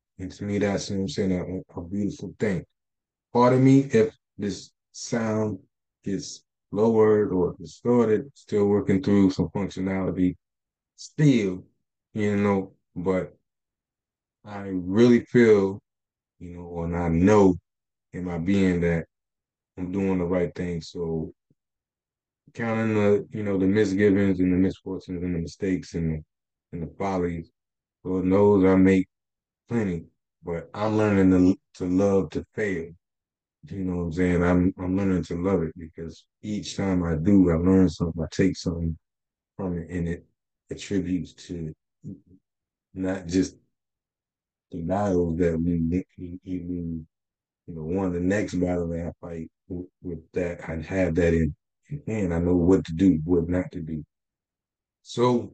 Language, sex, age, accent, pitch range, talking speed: English, male, 20-39, American, 85-100 Hz, 150 wpm